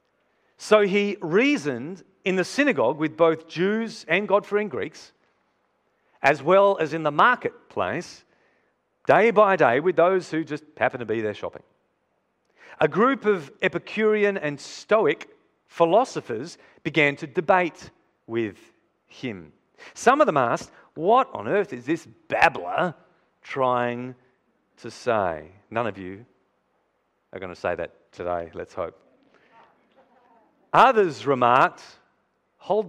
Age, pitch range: 40-59, 120-170 Hz